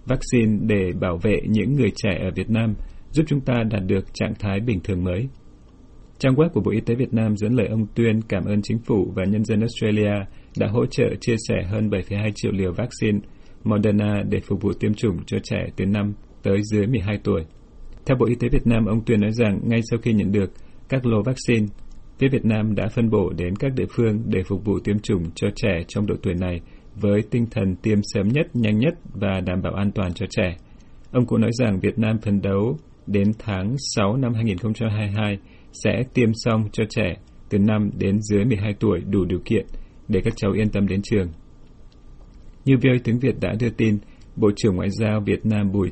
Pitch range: 100-115 Hz